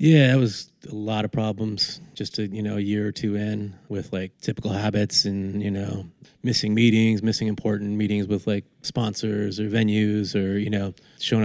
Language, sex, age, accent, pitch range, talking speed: English, male, 30-49, American, 100-110 Hz, 195 wpm